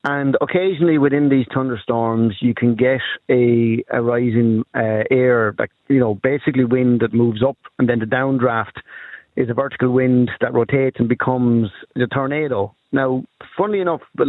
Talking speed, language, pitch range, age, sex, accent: 165 wpm, English, 115-135 Hz, 30-49, male, Irish